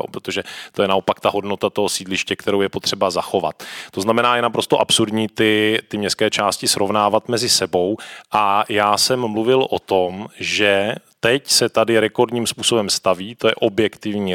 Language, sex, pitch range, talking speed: Czech, male, 100-120 Hz, 165 wpm